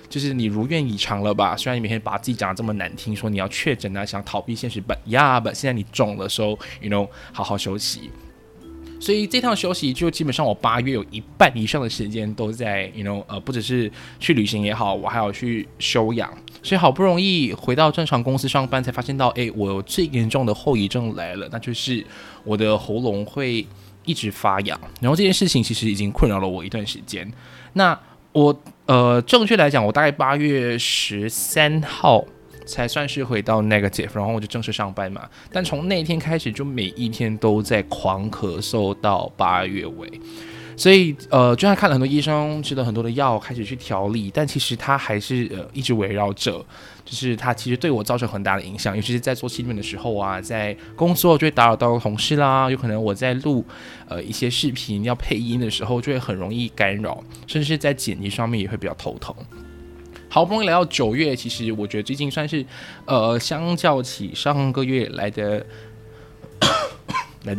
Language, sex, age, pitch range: Chinese, male, 20-39, 105-135 Hz